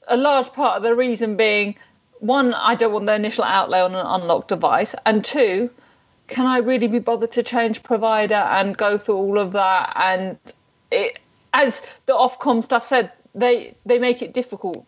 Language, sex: English, female